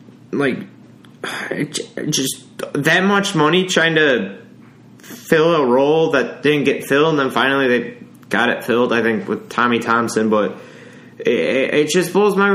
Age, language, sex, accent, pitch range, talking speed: 20-39, English, male, American, 120-170 Hz, 155 wpm